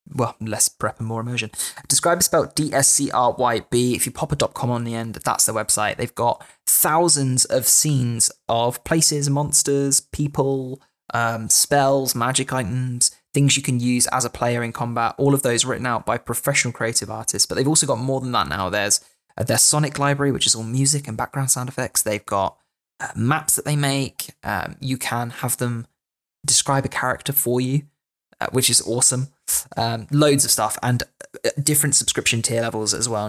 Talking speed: 185 wpm